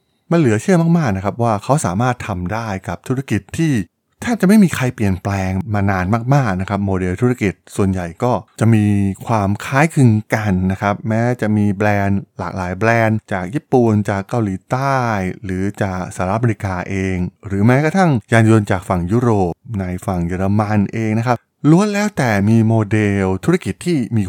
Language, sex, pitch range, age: Thai, male, 95-125 Hz, 20-39